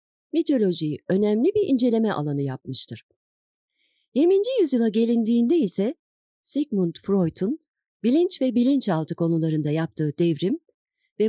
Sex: female